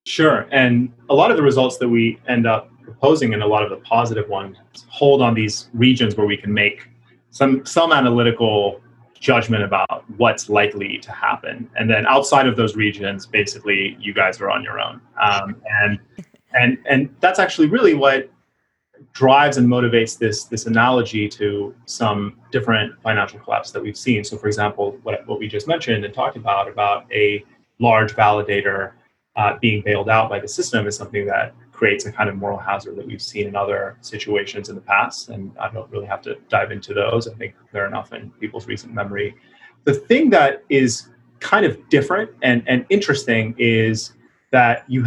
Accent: American